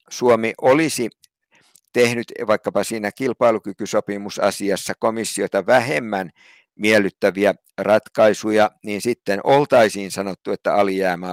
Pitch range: 105-135 Hz